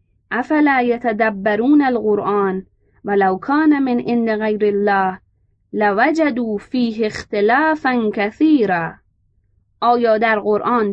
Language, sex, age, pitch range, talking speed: Persian, female, 20-39, 195-245 Hz, 90 wpm